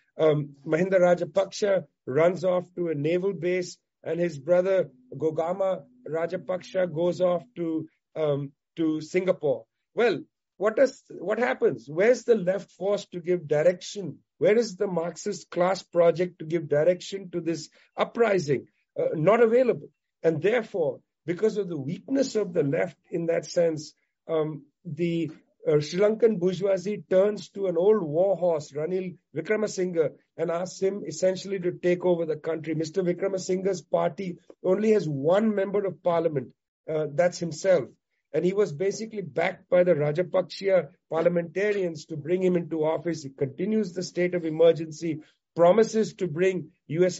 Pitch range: 165-190 Hz